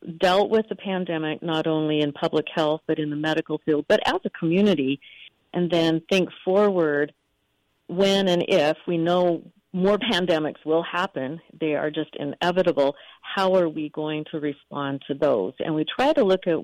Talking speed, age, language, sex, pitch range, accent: 175 wpm, 50-69, English, female, 155-200 Hz, American